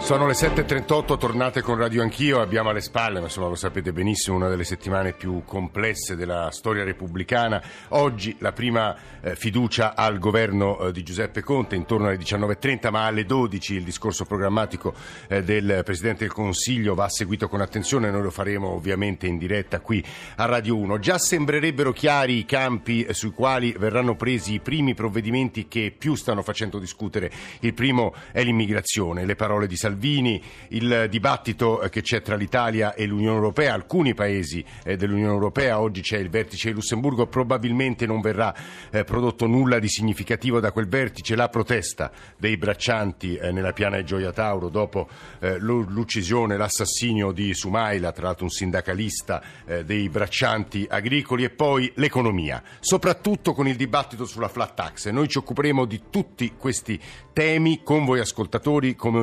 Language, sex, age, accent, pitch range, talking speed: Italian, male, 50-69, native, 100-125 Hz, 160 wpm